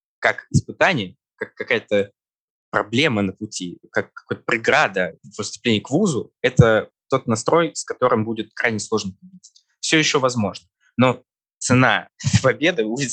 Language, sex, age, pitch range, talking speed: Russian, male, 20-39, 105-140 Hz, 135 wpm